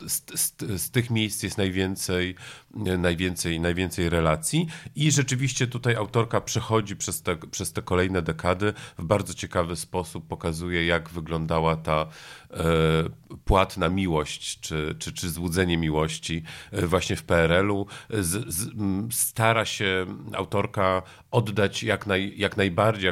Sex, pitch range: male, 85-105 Hz